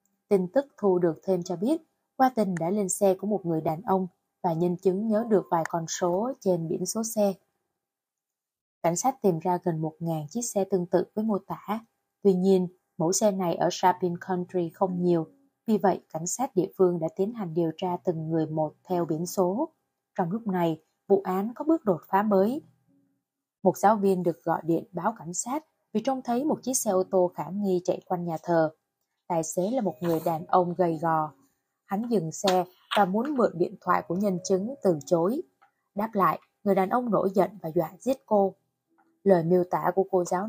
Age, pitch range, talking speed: 20-39, 175-205 Hz, 210 wpm